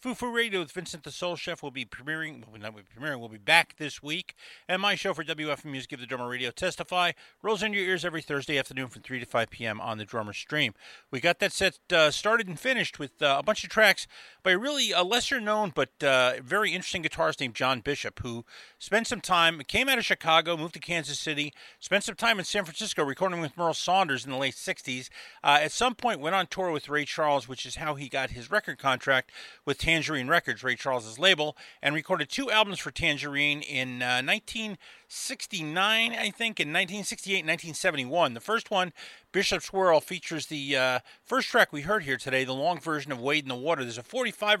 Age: 40-59